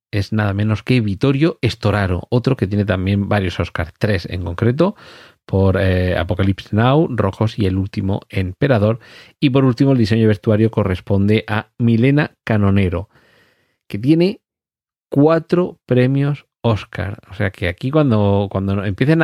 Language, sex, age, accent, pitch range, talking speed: Spanish, male, 40-59, Spanish, 100-125 Hz, 145 wpm